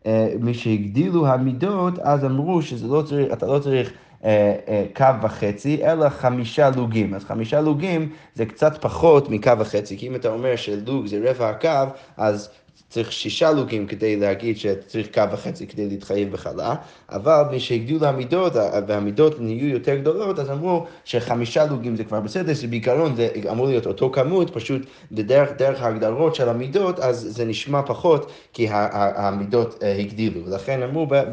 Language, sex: Hebrew, male